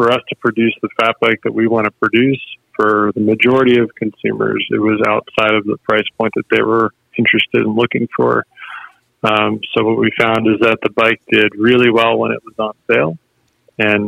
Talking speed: 210 wpm